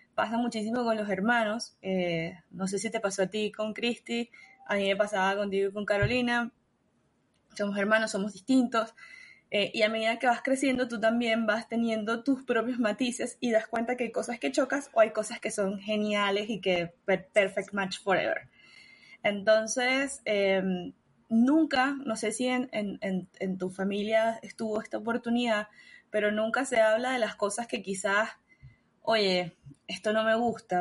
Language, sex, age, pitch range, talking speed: Spanish, female, 20-39, 200-235 Hz, 175 wpm